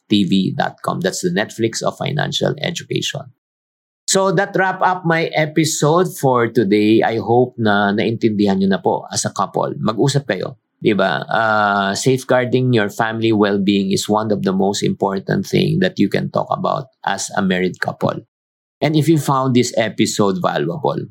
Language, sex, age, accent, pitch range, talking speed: Filipino, male, 50-69, native, 100-145 Hz, 160 wpm